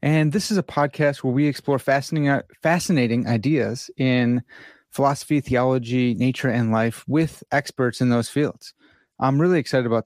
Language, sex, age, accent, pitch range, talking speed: English, male, 30-49, American, 120-155 Hz, 155 wpm